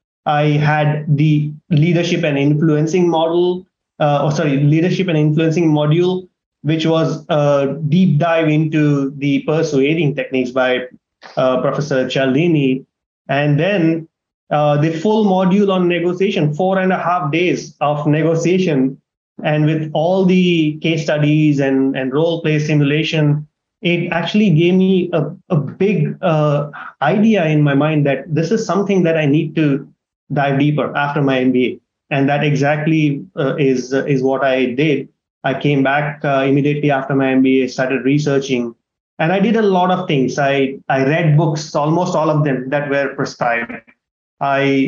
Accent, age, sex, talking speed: Indian, 20-39, male, 155 wpm